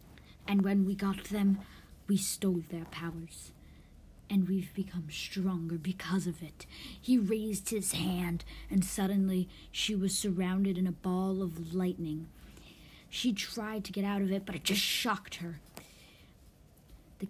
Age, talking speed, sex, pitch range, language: 40-59, 150 wpm, female, 170-200 Hz, English